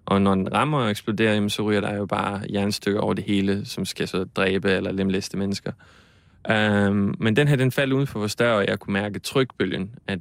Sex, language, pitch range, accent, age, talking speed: male, Danish, 100-115 Hz, native, 20-39, 225 wpm